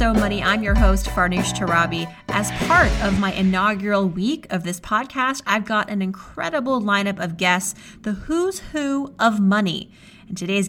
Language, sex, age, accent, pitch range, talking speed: English, female, 30-49, American, 185-225 Hz, 165 wpm